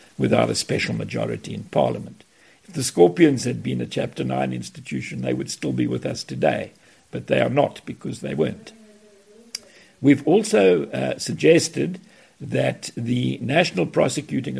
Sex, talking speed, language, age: male, 150 wpm, English, 60-79